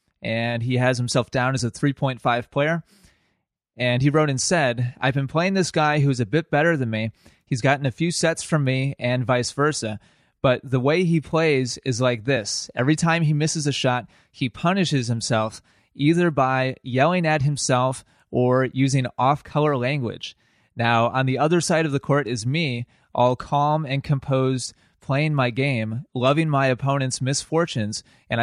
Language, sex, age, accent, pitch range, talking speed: English, male, 20-39, American, 125-145 Hz, 175 wpm